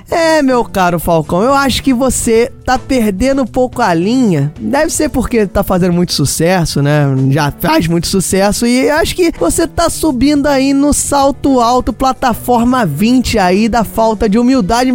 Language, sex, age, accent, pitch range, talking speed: Portuguese, male, 20-39, Brazilian, 200-270 Hz, 175 wpm